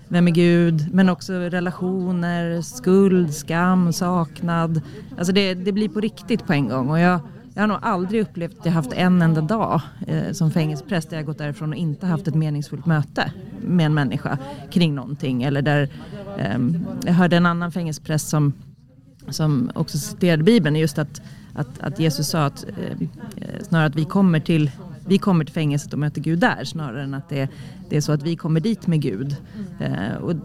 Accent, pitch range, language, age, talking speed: native, 150-185 Hz, Swedish, 30-49, 190 wpm